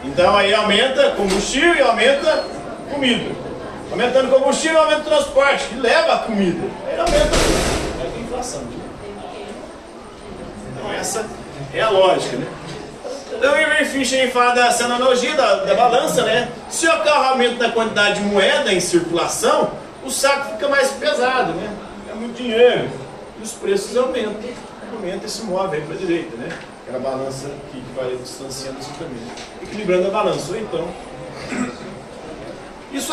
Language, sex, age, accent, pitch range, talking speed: Portuguese, male, 40-59, Brazilian, 190-275 Hz, 145 wpm